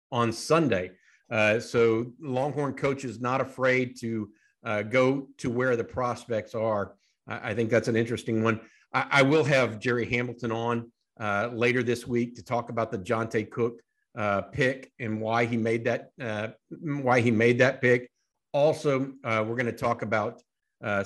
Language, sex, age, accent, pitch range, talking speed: English, male, 50-69, American, 115-140 Hz, 175 wpm